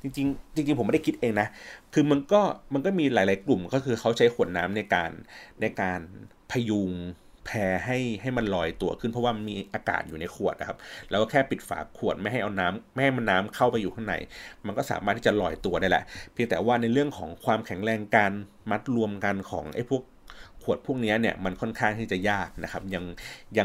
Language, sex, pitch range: Thai, male, 95-125 Hz